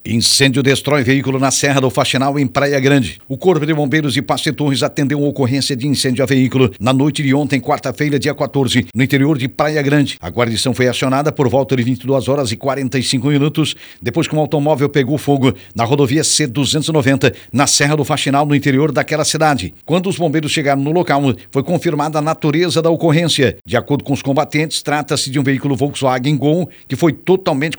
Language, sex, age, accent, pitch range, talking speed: Portuguese, male, 60-79, Brazilian, 135-155 Hz, 195 wpm